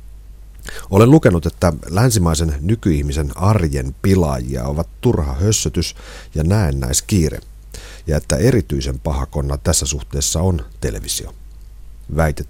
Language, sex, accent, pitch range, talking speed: Finnish, male, native, 75-95 Hz, 100 wpm